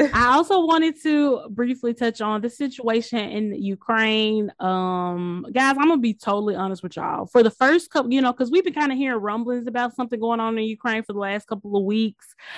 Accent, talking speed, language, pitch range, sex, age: American, 220 wpm, English, 190-240 Hz, female, 20-39